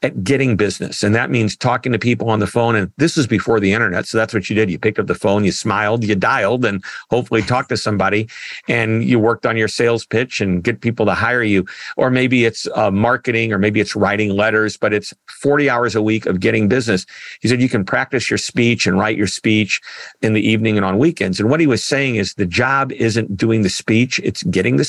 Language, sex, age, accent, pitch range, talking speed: English, male, 50-69, American, 105-125 Hz, 245 wpm